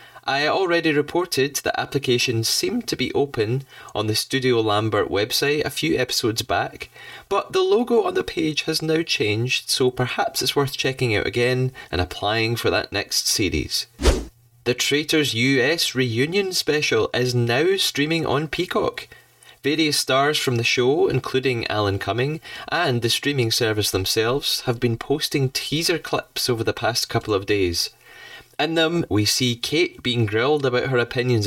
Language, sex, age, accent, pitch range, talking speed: English, male, 20-39, British, 115-150 Hz, 160 wpm